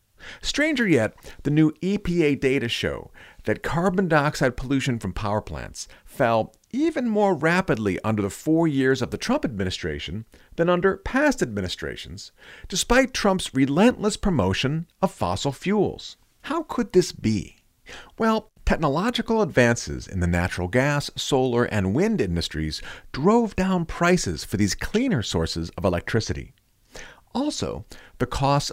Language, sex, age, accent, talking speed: English, male, 50-69, American, 135 wpm